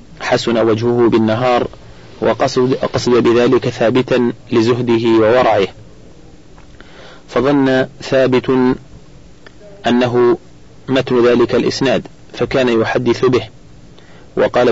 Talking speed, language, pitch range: 75 wpm, Arabic, 110-125 Hz